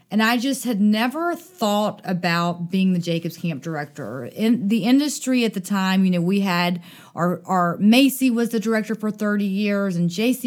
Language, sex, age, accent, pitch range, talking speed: English, female, 30-49, American, 185-225 Hz, 190 wpm